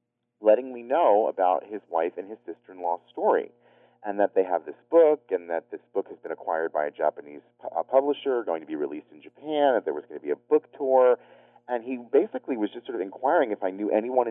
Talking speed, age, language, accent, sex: 245 wpm, 30-49, English, American, male